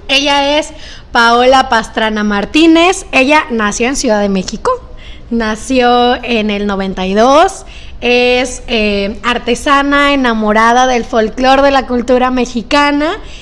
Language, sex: Spanish, female